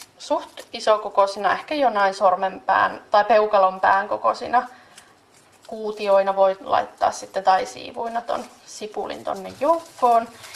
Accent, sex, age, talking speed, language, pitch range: native, female, 30-49, 100 wpm, Finnish, 195-260 Hz